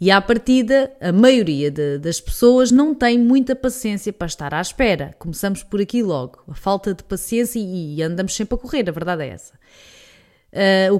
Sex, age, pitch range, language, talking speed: female, 20-39, 175-255 Hz, Portuguese, 185 wpm